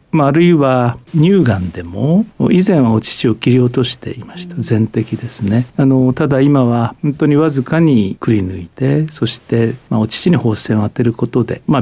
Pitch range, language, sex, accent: 115-150 Hz, Japanese, male, native